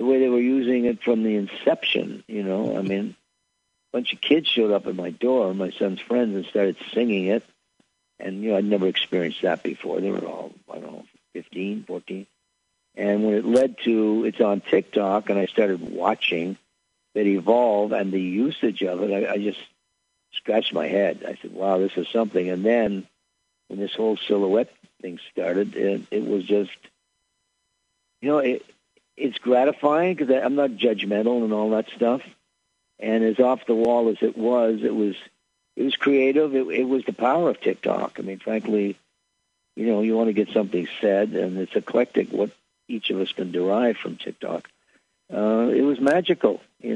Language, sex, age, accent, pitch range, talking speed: English, male, 60-79, American, 100-120 Hz, 190 wpm